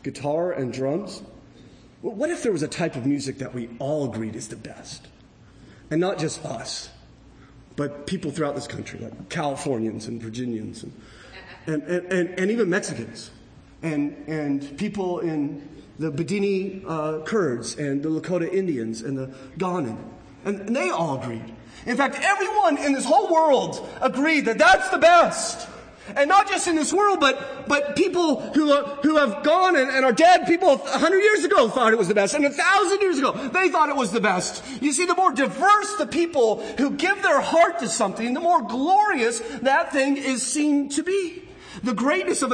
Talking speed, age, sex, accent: 190 wpm, 30-49, male, American